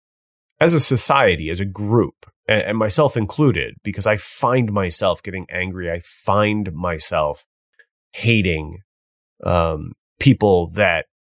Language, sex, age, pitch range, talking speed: English, male, 30-49, 95-120 Hz, 115 wpm